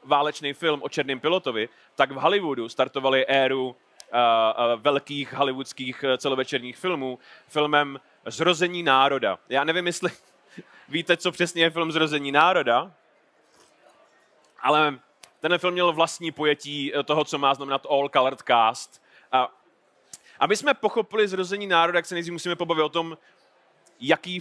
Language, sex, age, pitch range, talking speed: Czech, male, 30-49, 130-175 Hz, 135 wpm